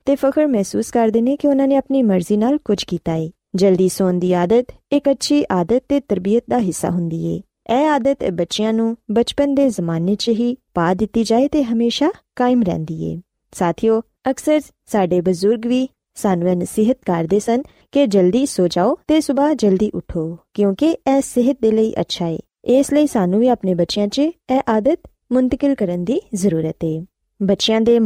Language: Punjabi